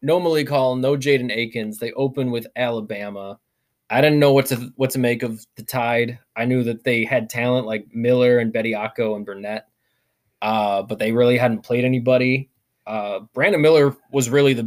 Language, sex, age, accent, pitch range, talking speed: English, male, 20-39, American, 110-130 Hz, 190 wpm